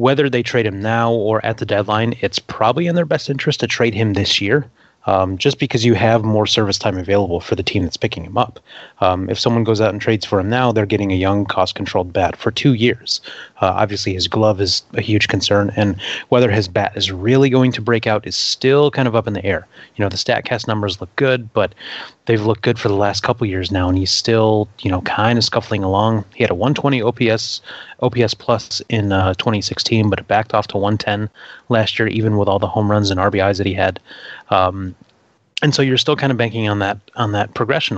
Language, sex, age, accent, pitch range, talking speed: English, male, 30-49, American, 100-120 Hz, 235 wpm